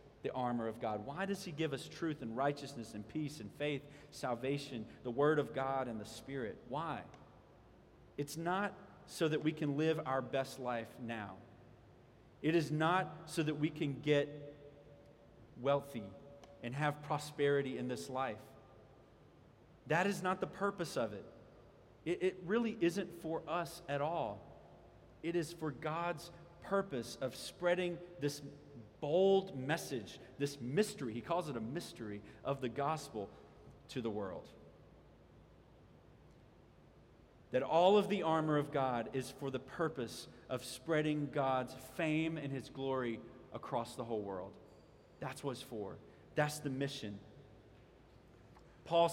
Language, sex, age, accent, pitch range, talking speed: English, male, 40-59, American, 125-160 Hz, 145 wpm